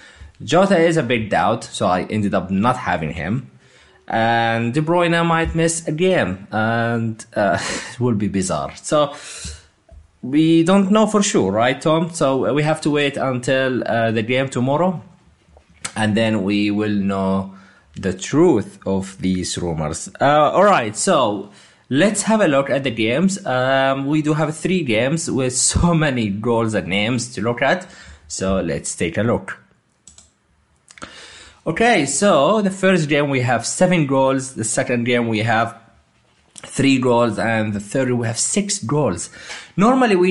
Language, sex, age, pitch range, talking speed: English, male, 20-39, 105-155 Hz, 160 wpm